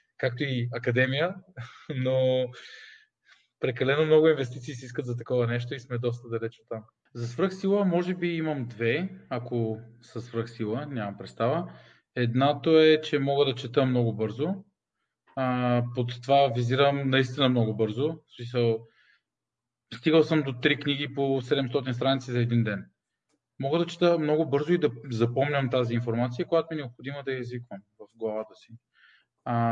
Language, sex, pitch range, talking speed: Bulgarian, male, 120-150 Hz, 150 wpm